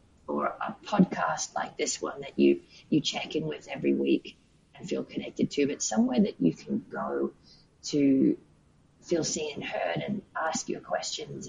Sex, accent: female, Australian